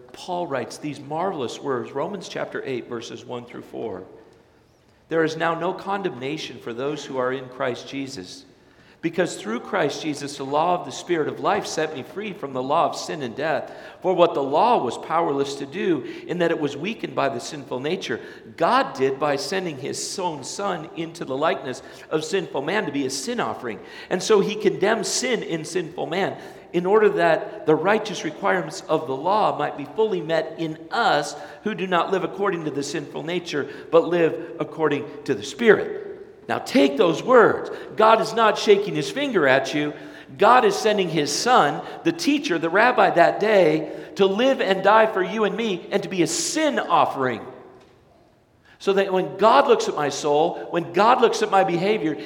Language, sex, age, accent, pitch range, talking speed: English, male, 50-69, American, 150-215 Hz, 195 wpm